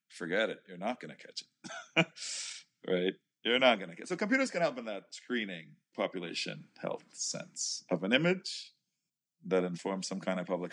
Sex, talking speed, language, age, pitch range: male, 185 wpm, English, 40-59, 95-120 Hz